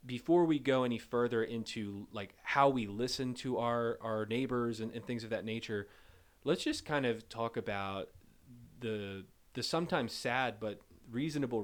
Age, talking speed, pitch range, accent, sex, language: 30-49, 165 wpm, 105-125 Hz, American, male, English